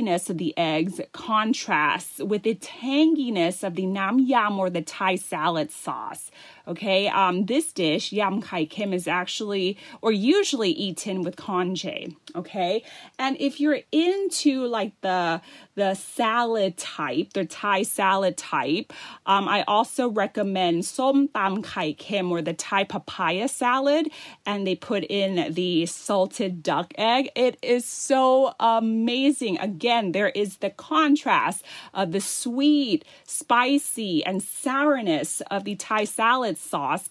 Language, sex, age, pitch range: Thai, female, 30-49, 185-260 Hz